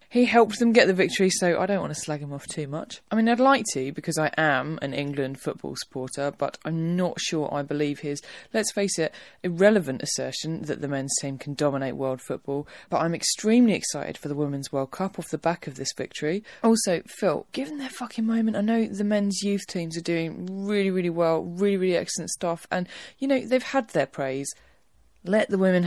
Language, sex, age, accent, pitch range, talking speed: English, female, 20-39, British, 155-215 Hz, 220 wpm